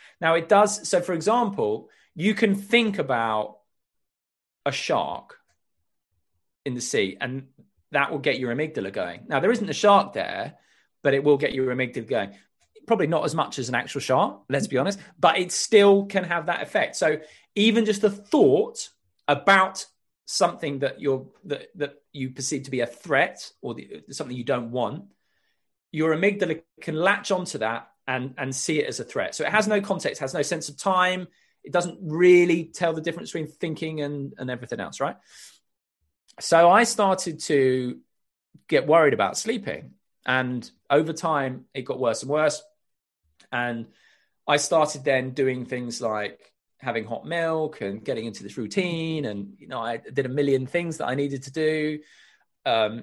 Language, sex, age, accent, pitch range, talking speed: English, male, 30-49, British, 130-175 Hz, 180 wpm